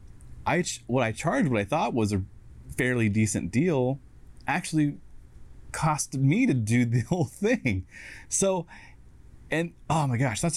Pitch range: 105-140 Hz